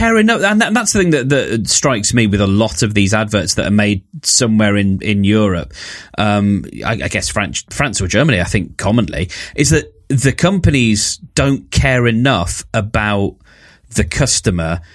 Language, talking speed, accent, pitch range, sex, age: English, 175 wpm, British, 100-125 Hz, male, 30-49